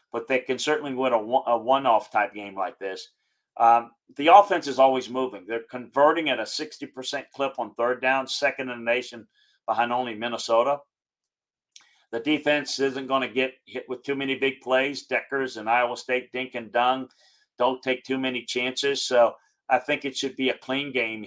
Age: 40-59